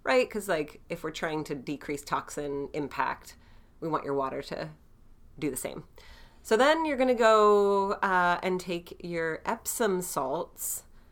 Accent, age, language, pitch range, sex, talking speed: American, 30-49, English, 150-190 Hz, female, 155 wpm